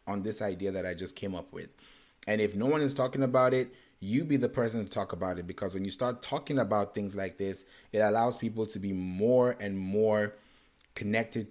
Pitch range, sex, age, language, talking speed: 100-120 Hz, male, 30-49, English, 220 wpm